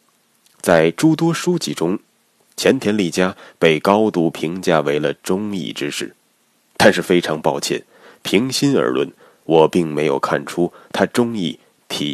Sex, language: male, Chinese